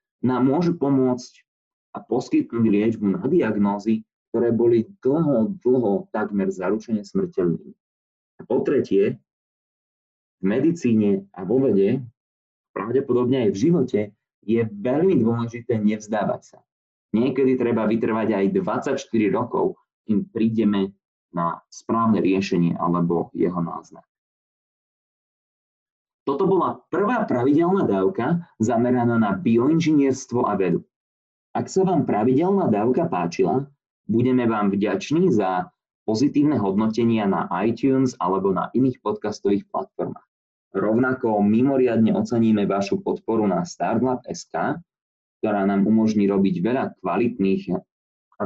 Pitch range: 100-125 Hz